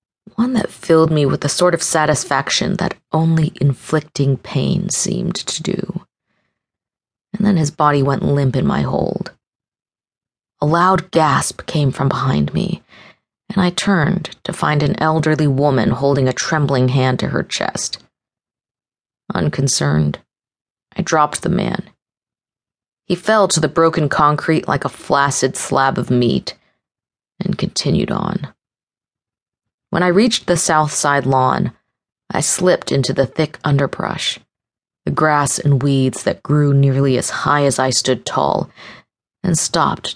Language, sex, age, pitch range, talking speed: English, female, 30-49, 140-175 Hz, 140 wpm